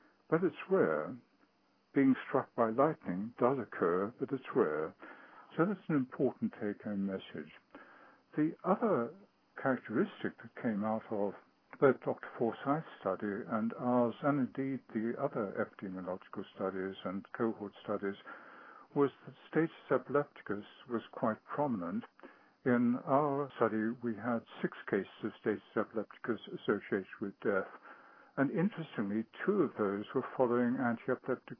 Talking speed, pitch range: 130 wpm, 100-135 Hz